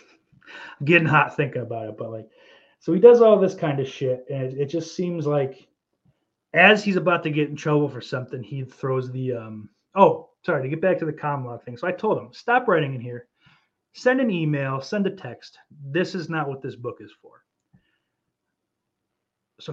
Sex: male